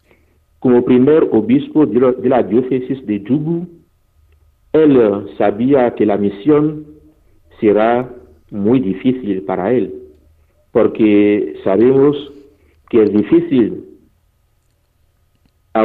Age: 50-69